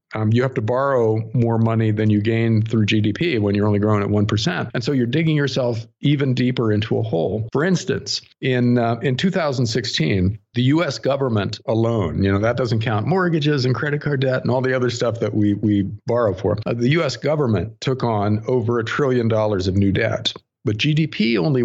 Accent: American